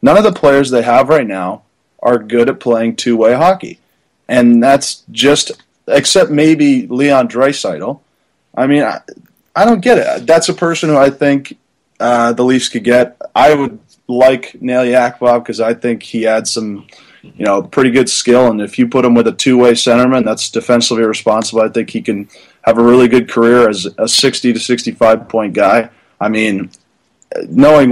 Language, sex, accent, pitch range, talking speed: English, male, American, 115-135 Hz, 185 wpm